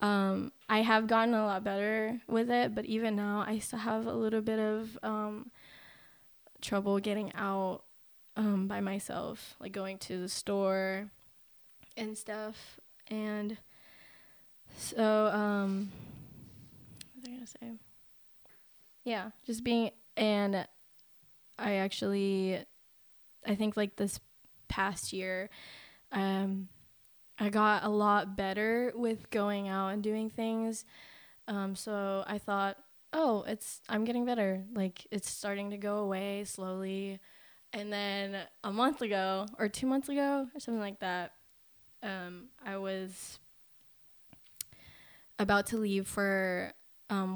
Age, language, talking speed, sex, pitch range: 10-29, English, 130 wpm, female, 195-220 Hz